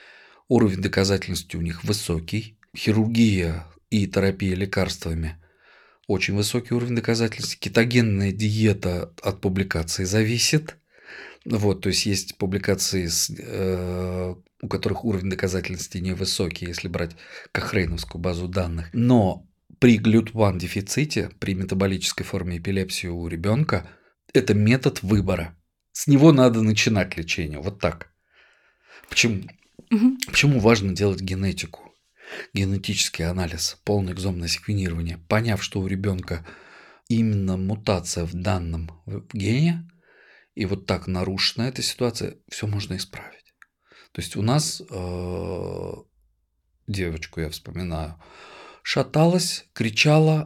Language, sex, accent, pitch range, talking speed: Russian, male, native, 90-110 Hz, 110 wpm